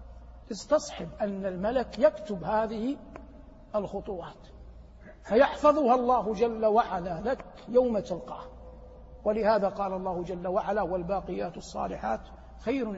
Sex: male